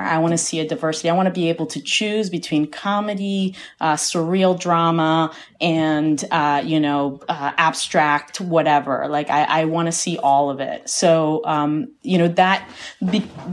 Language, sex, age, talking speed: English, female, 30-49, 175 wpm